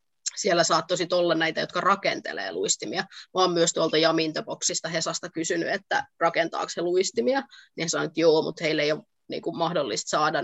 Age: 20-39